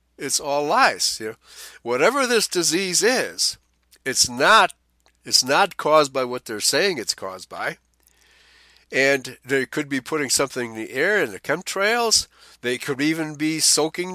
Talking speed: 160 wpm